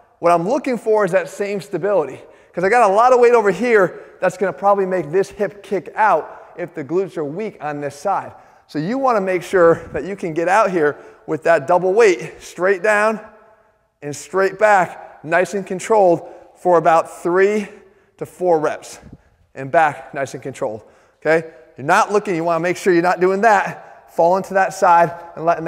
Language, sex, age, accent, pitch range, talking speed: English, male, 20-39, American, 160-205 Hz, 205 wpm